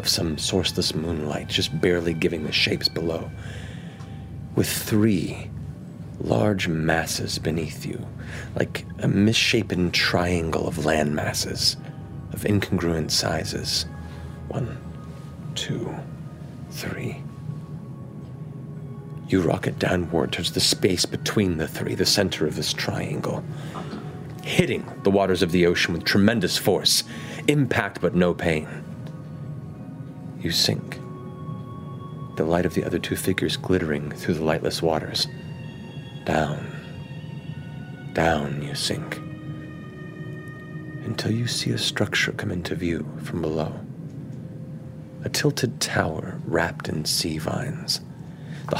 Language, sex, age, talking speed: English, male, 40-59, 115 wpm